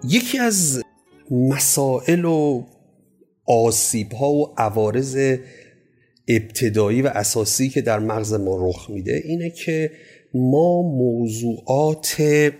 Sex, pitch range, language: male, 110-160 Hz, Persian